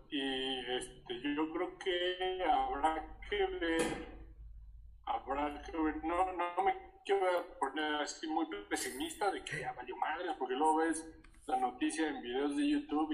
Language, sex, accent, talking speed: Spanish, male, Mexican, 150 wpm